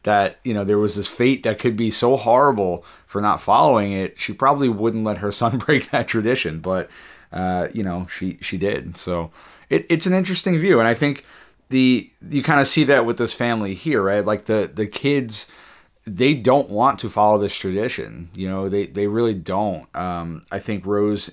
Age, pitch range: 30-49, 90-110 Hz